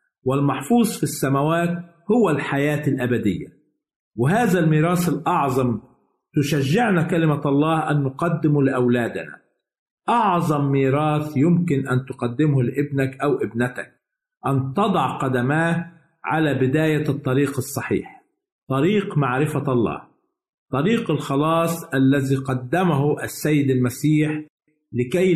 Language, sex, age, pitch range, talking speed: Arabic, male, 50-69, 130-160 Hz, 95 wpm